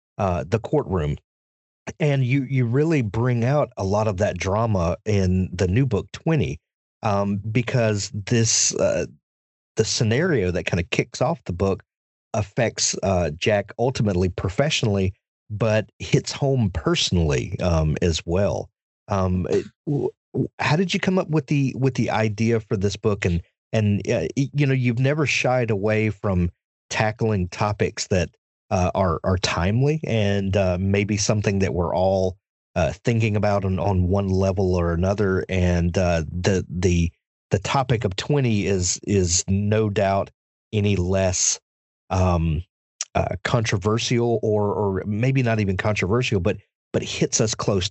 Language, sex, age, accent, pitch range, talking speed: English, male, 40-59, American, 95-115 Hz, 150 wpm